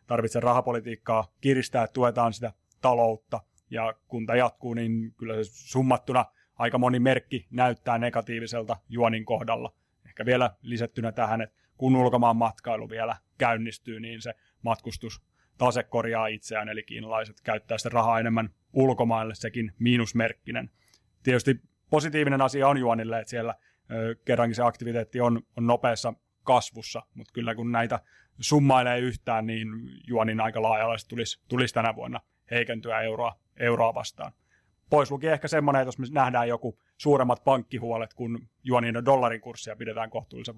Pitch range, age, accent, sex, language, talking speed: 110-125 Hz, 30-49, native, male, Finnish, 140 wpm